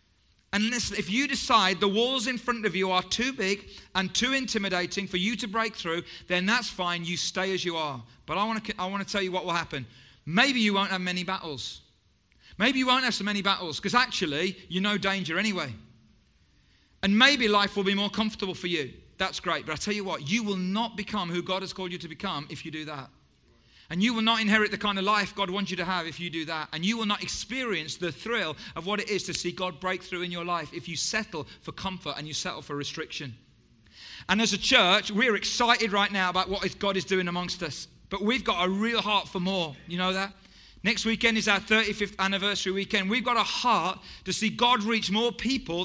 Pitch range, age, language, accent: 175-215 Hz, 40-59, English, British